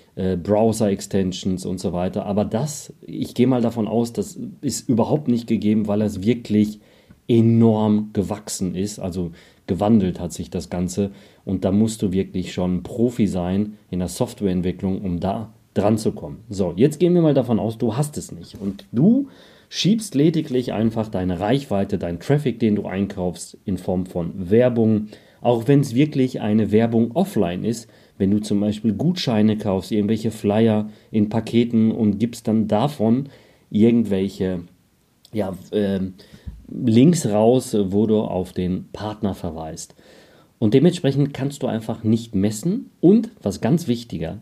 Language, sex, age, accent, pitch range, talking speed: German, male, 40-59, German, 95-120 Hz, 155 wpm